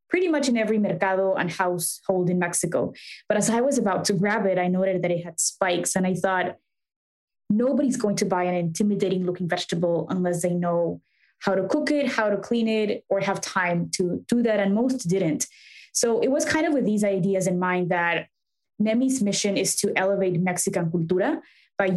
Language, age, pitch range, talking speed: English, 20-39, 180-210 Hz, 200 wpm